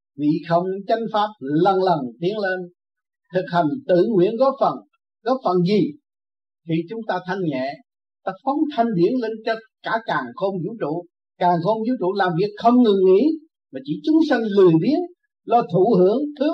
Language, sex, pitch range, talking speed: Vietnamese, male, 165-245 Hz, 190 wpm